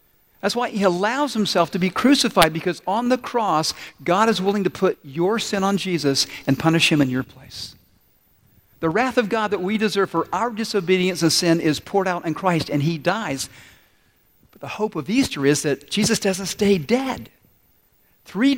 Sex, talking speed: male, 190 wpm